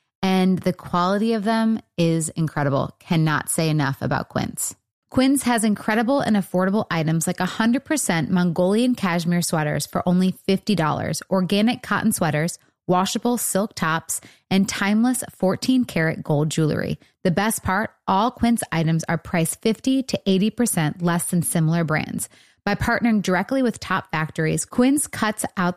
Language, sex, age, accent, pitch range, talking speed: English, female, 30-49, American, 160-215 Hz, 145 wpm